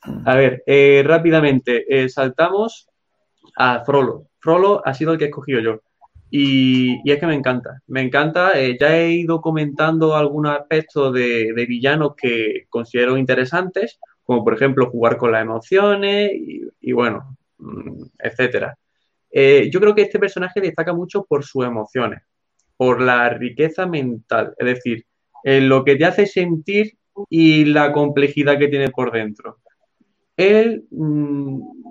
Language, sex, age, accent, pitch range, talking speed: Spanish, male, 20-39, Spanish, 125-165 Hz, 145 wpm